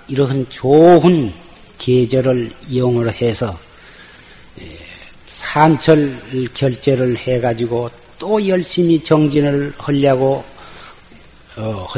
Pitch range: 125-155 Hz